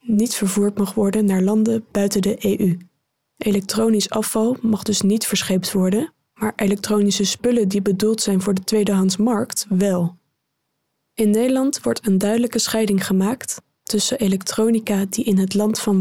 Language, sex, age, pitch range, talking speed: Dutch, female, 20-39, 200-230 Hz, 150 wpm